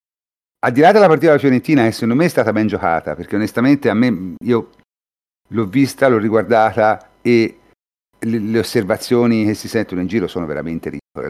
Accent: native